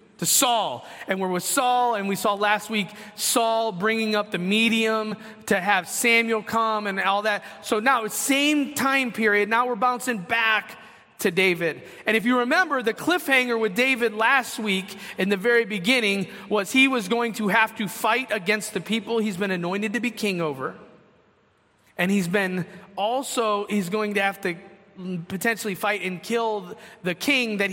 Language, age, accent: English, 30-49, American